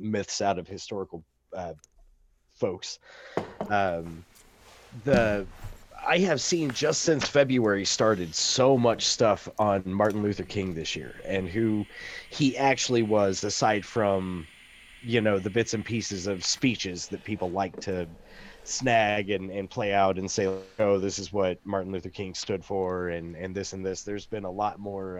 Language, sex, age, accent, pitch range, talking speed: English, male, 30-49, American, 95-110 Hz, 165 wpm